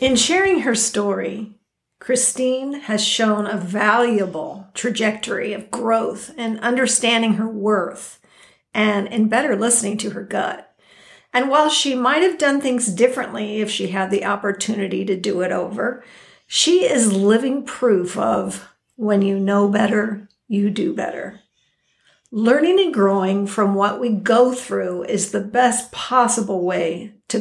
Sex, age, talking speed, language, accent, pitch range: female, 50-69, 145 wpm, English, American, 200-235 Hz